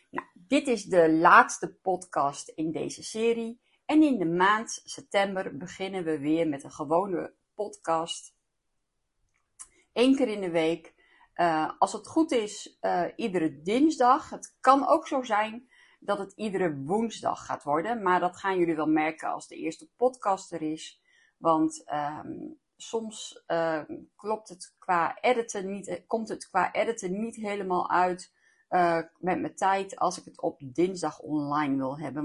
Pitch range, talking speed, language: 160-235 Hz, 150 wpm, Dutch